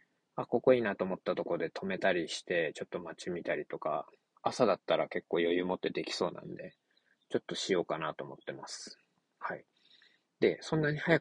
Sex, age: male, 20-39